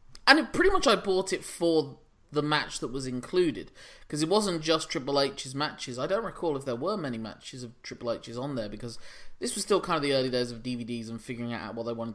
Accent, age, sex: British, 20-39, male